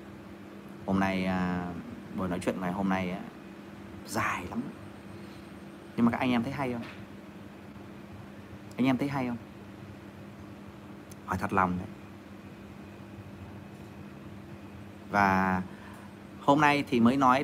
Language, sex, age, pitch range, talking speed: Vietnamese, male, 30-49, 100-160 Hz, 115 wpm